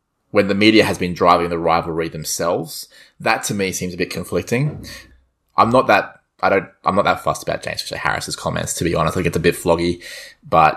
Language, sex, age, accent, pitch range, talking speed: English, male, 20-39, Australian, 85-100 Hz, 230 wpm